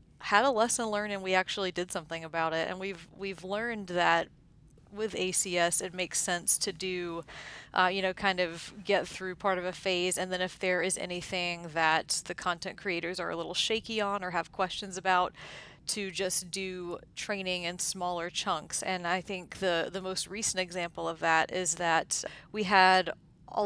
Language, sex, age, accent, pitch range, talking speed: English, female, 30-49, American, 170-190 Hz, 190 wpm